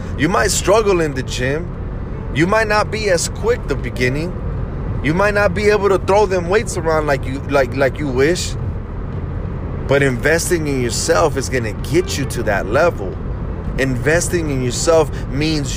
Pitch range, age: 110-155 Hz, 30-49